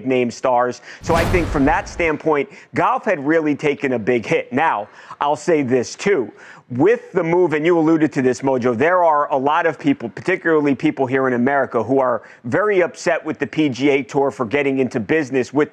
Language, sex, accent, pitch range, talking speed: English, male, American, 130-155 Hz, 200 wpm